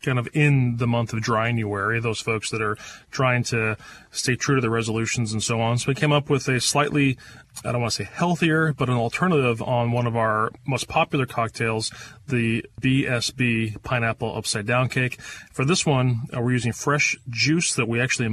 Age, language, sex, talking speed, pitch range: 30-49, English, male, 200 wpm, 115-140 Hz